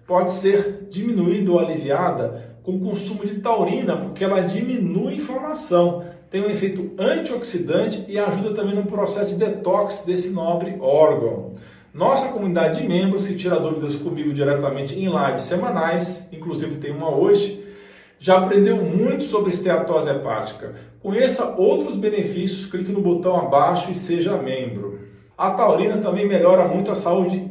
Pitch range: 170-200 Hz